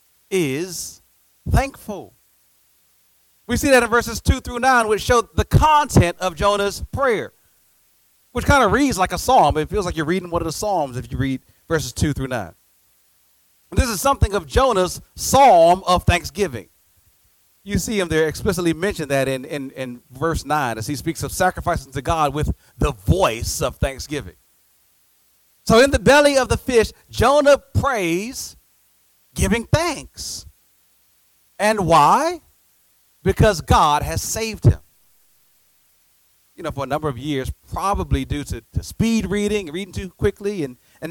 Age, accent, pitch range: 40-59, American, 145-230 Hz